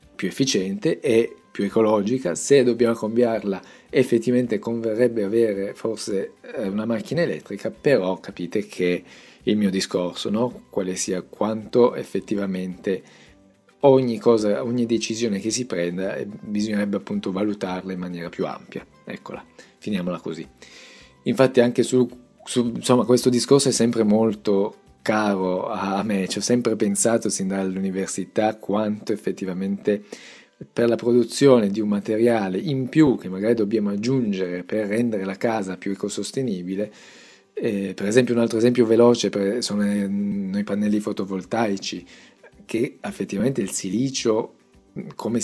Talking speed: 130 wpm